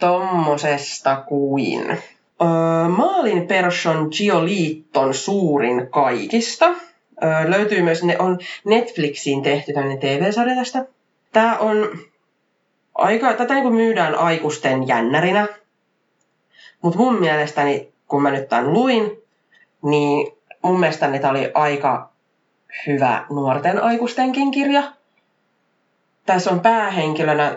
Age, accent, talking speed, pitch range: 30-49, native, 100 wpm, 145-205 Hz